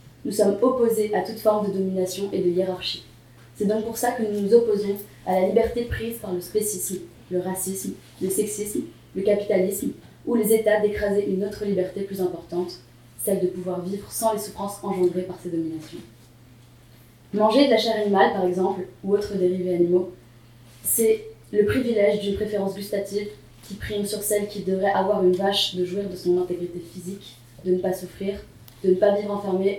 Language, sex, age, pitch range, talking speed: French, female, 20-39, 180-210 Hz, 185 wpm